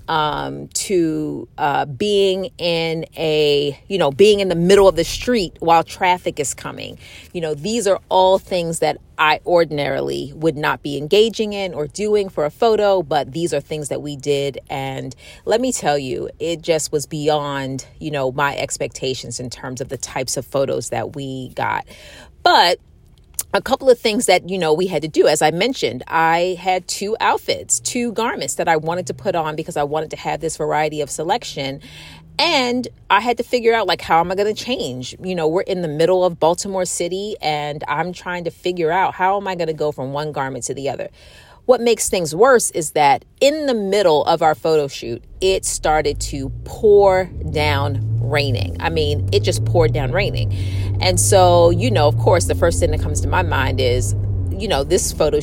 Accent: American